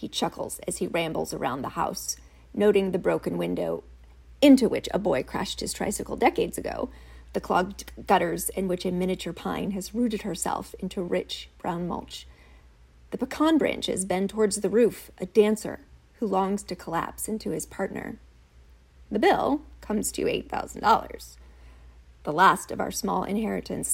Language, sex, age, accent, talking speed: English, female, 30-49, American, 160 wpm